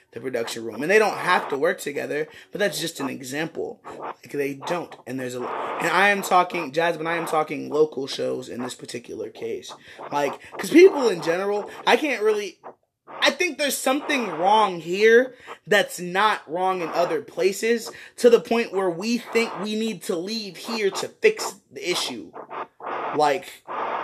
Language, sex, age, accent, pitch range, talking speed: English, male, 20-39, American, 195-300 Hz, 175 wpm